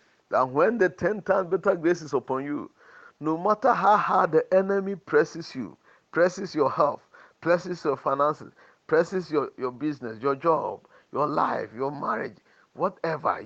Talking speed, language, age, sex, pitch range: 155 wpm, English, 50-69, male, 130-180 Hz